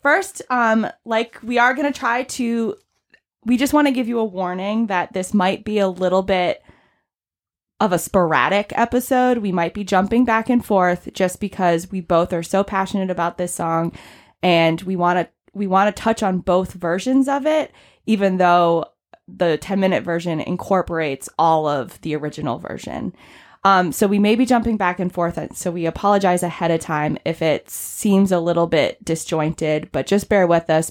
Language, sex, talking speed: English, female, 190 wpm